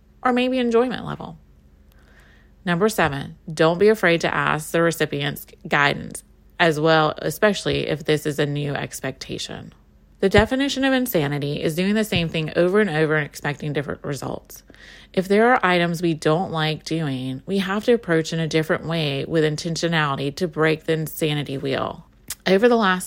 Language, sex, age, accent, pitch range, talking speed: English, female, 30-49, American, 155-210 Hz, 170 wpm